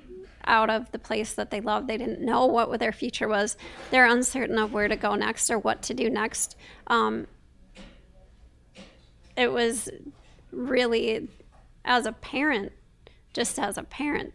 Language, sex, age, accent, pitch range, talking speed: English, female, 30-49, American, 215-245 Hz, 155 wpm